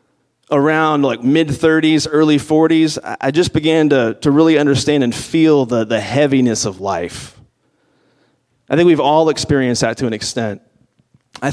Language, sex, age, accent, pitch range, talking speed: English, male, 30-49, American, 125-165 Hz, 155 wpm